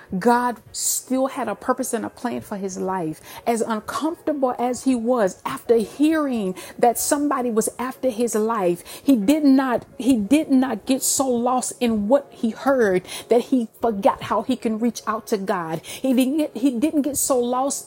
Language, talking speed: English, 185 wpm